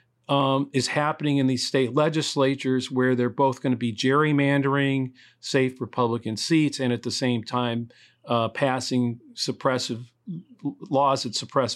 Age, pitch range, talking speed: 40-59, 125-150 Hz, 145 wpm